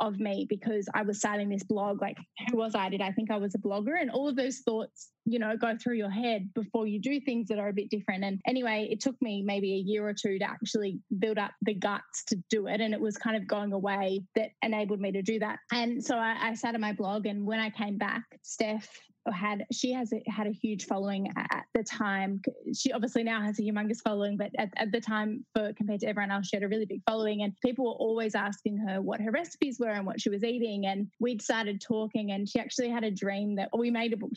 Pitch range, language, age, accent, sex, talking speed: 205-230 Hz, English, 10-29, Australian, female, 260 wpm